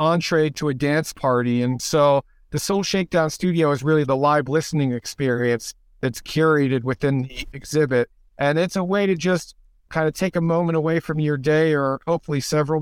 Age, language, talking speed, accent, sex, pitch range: 50-69, English, 185 wpm, American, male, 135-160 Hz